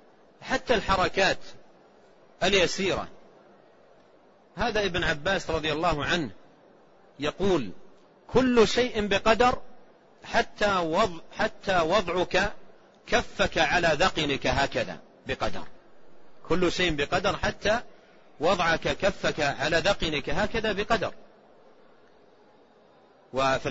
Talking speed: 80 wpm